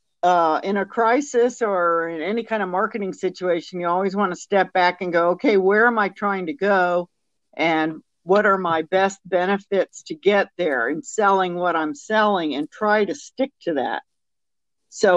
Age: 50-69